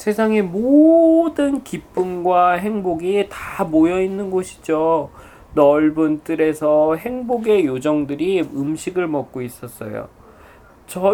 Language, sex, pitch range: Korean, male, 140-210 Hz